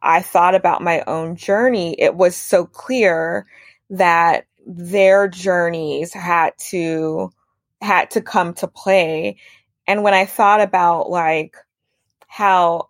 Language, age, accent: English, 20-39, American